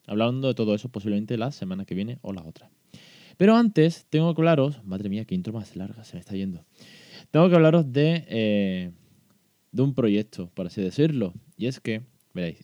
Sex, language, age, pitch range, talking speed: male, Spanish, 20-39, 100-140 Hz, 200 wpm